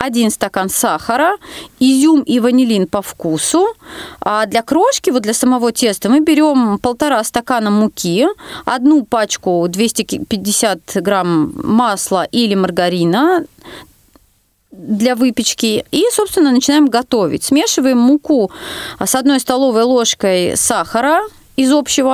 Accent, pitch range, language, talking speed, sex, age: native, 215-295 Hz, Russian, 115 wpm, female, 30-49